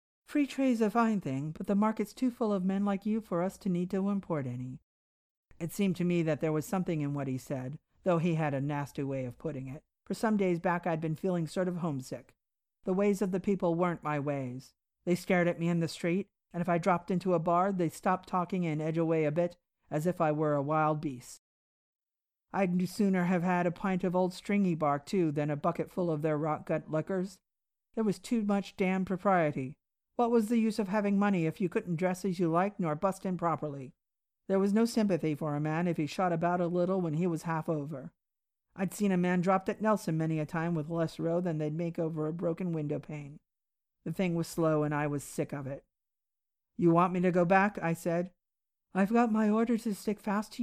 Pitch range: 155-195 Hz